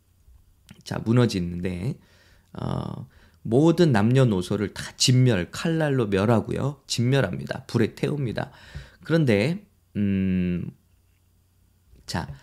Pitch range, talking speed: 100-140 Hz, 70 wpm